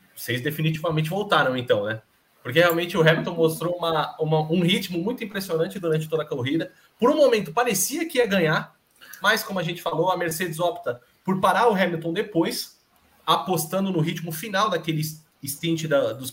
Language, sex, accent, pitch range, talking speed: Portuguese, male, Brazilian, 155-195 Hz, 165 wpm